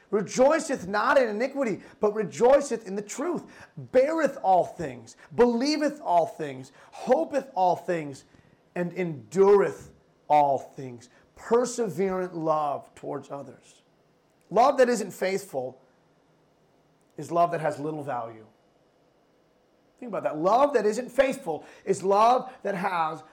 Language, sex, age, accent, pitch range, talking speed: English, male, 30-49, American, 170-245 Hz, 120 wpm